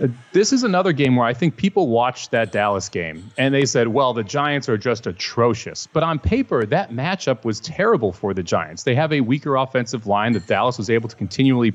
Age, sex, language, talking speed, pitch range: 30-49, male, English, 225 wpm, 115-150 Hz